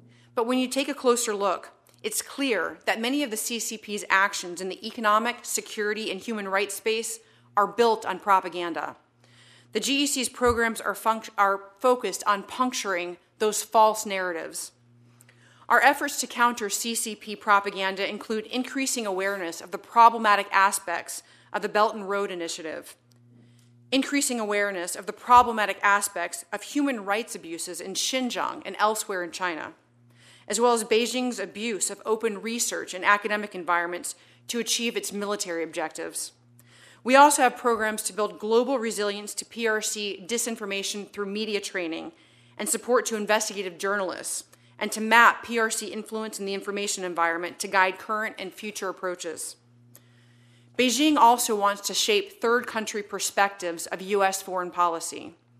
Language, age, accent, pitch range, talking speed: English, 30-49, American, 180-230 Hz, 145 wpm